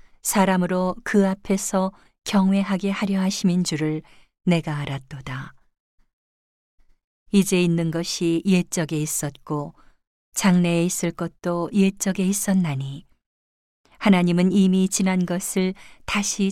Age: 40-59